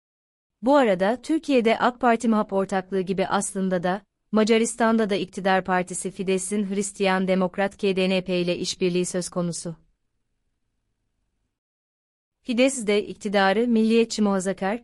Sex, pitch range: female, 185-220 Hz